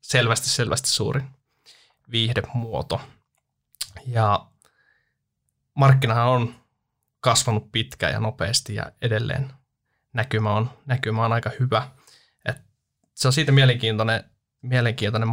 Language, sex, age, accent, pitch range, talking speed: Finnish, male, 20-39, native, 115-135 Hz, 100 wpm